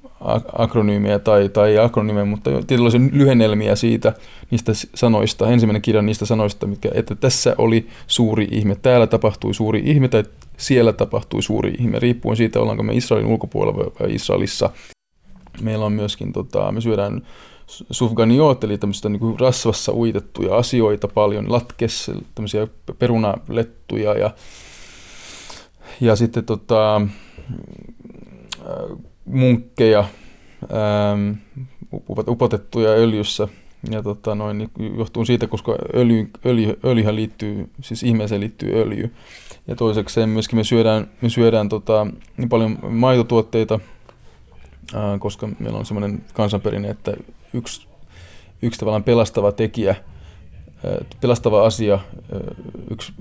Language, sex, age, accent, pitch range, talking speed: Finnish, male, 20-39, native, 105-115 Hz, 120 wpm